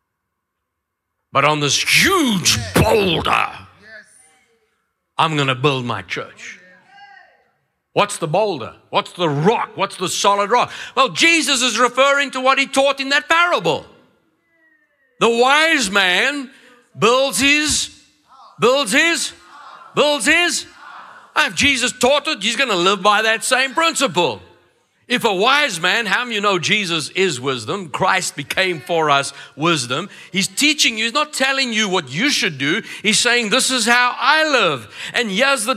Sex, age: male, 60-79